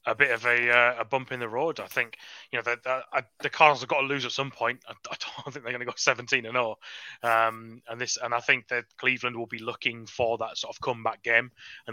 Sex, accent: male, British